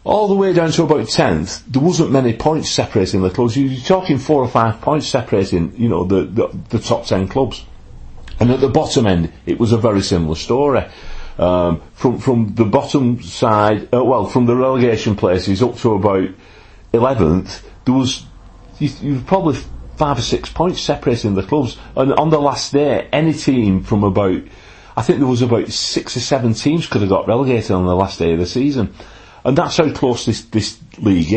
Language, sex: English, male